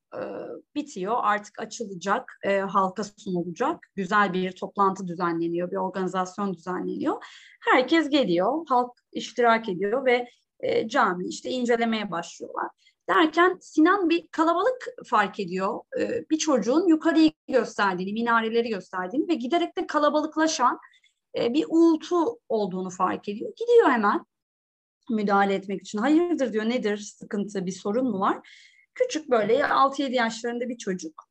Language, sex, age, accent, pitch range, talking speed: Turkish, female, 30-49, native, 210-340 Hz, 125 wpm